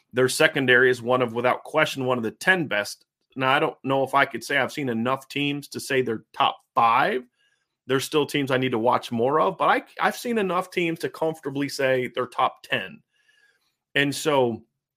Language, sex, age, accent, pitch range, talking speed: English, male, 30-49, American, 125-160 Hz, 205 wpm